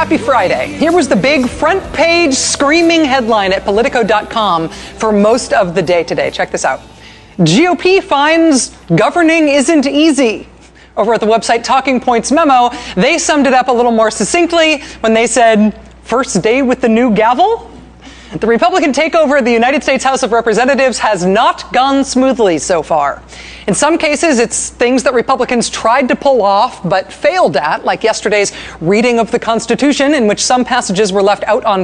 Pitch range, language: 215-280 Hz, English